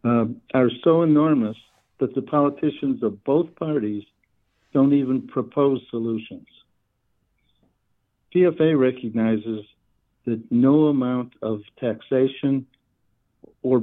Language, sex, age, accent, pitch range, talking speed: English, male, 60-79, American, 115-130 Hz, 95 wpm